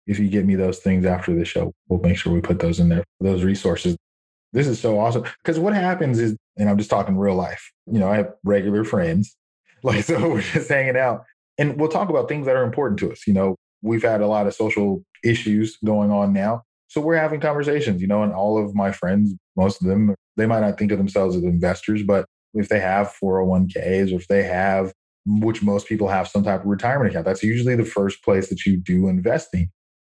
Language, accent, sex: English, American, male